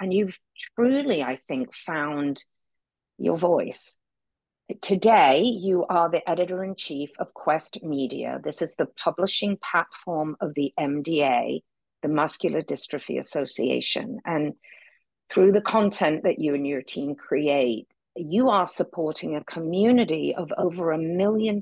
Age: 50-69